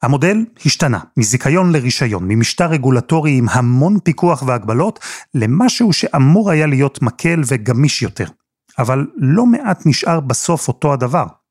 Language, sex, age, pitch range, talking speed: Hebrew, male, 30-49, 120-165 Hz, 125 wpm